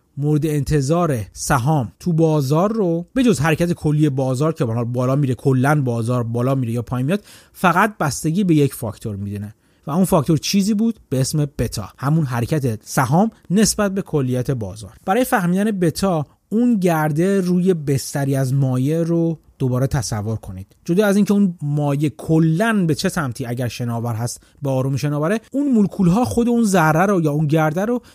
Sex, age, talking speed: male, 30-49, 170 wpm